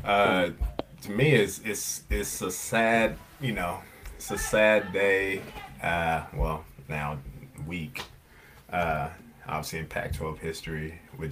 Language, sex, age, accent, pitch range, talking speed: English, male, 20-39, American, 75-85 Hz, 125 wpm